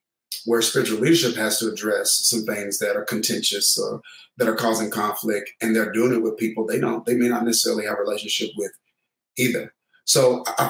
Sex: male